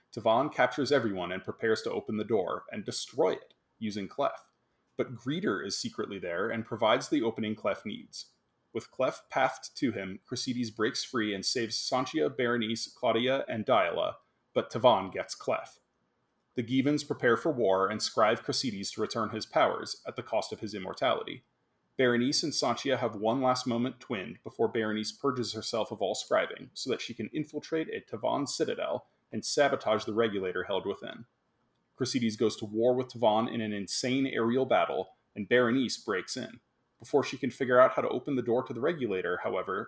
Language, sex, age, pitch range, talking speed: English, male, 30-49, 110-130 Hz, 180 wpm